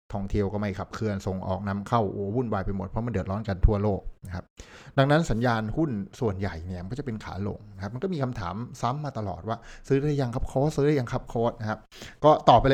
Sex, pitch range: male, 95-120 Hz